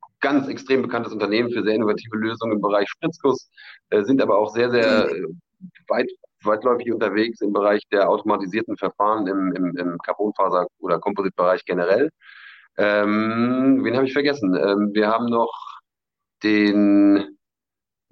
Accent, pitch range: German, 105-125 Hz